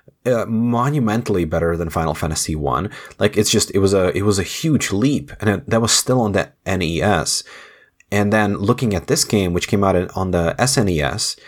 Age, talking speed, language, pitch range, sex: 20-39, 205 wpm, English, 90-110 Hz, male